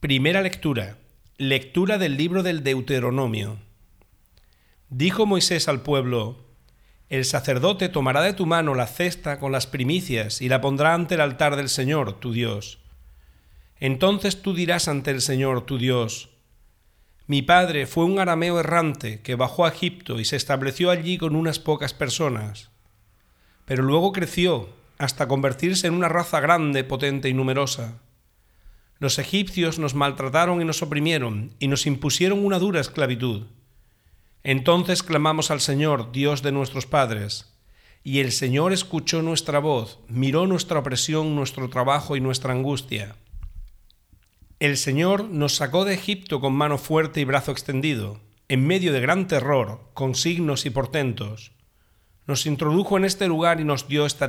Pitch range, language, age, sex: 120-160 Hz, Spanish, 40-59, male